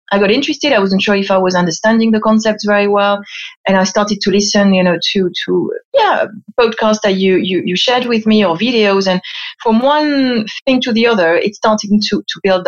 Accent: French